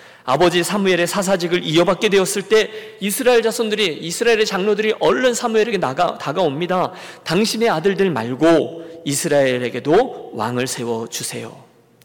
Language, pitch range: Korean, 140-210 Hz